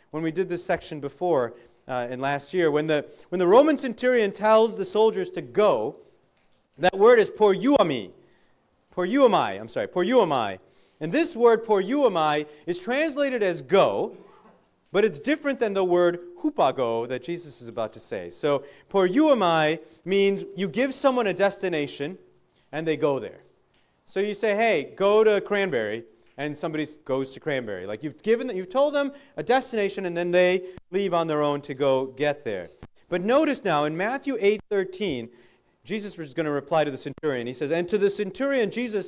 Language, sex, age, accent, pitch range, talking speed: English, male, 40-59, American, 150-220 Hz, 195 wpm